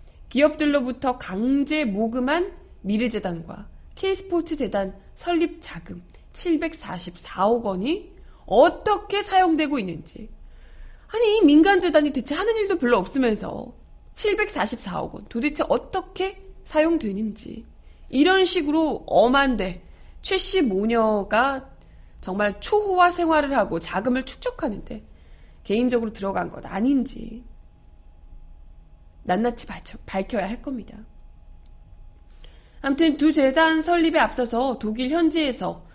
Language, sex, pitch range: Korean, female, 195-310 Hz